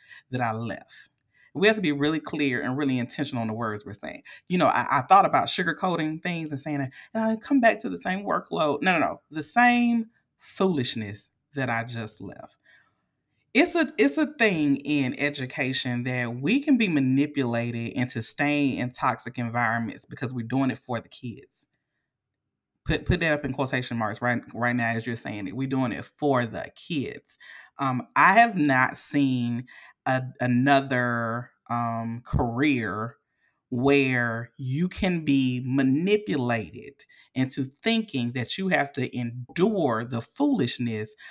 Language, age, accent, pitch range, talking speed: English, 30-49, American, 120-150 Hz, 165 wpm